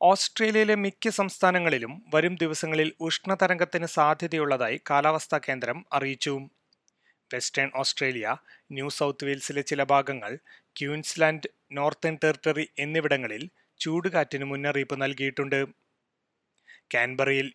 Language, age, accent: Malayalam, 30-49, native